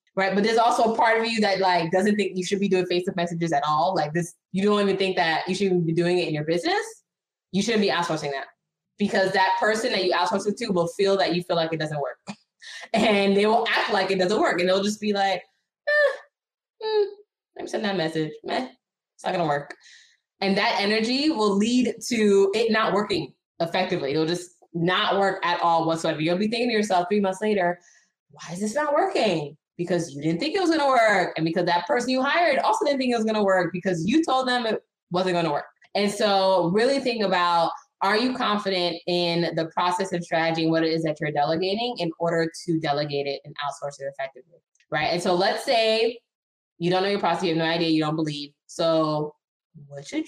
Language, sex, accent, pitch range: English, female, American, 165-210 Hz